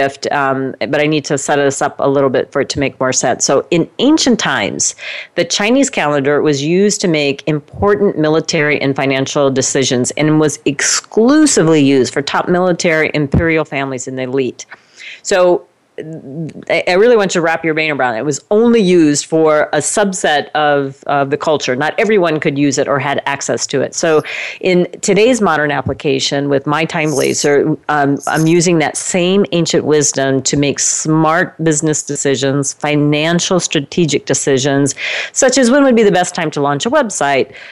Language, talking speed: English, 180 wpm